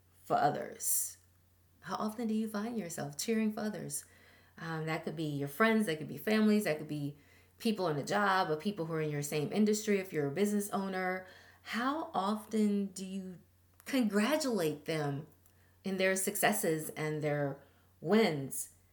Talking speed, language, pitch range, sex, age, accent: 170 wpm, English, 145-220 Hz, female, 30-49, American